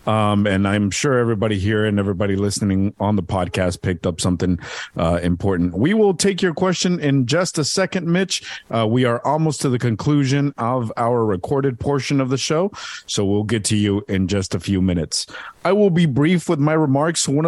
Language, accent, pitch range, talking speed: English, American, 100-140 Hz, 205 wpm